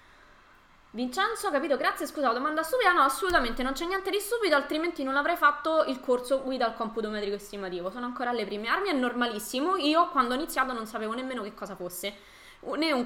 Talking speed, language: 195 wpm, Italian